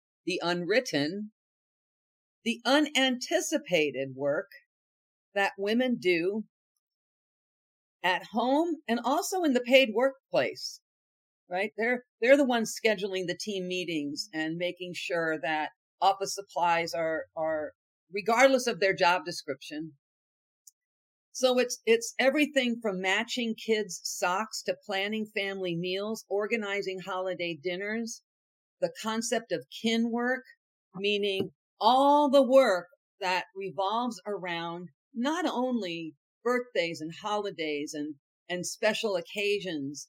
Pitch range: 170-230 Hz